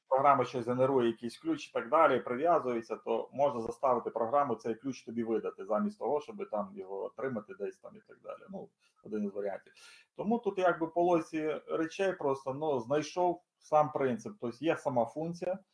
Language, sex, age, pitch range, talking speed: Ukrainian, male, 30-49, 125-180 Hz, 175 wpm